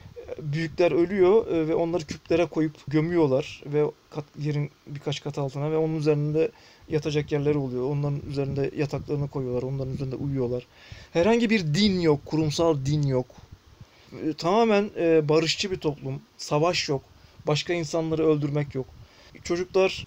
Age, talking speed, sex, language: 40-59, 130 wpm, male, Turkish